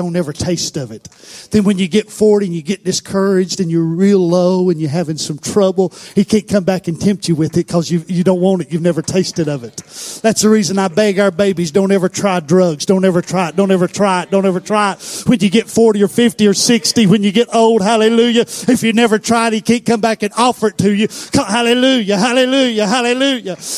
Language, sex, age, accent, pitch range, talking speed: English, male, 40-59, American, 200-325 Hz, 240 wpm